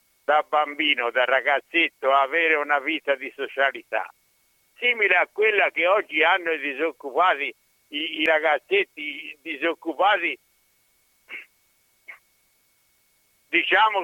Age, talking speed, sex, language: 60-79, 100 wpm, male, Italian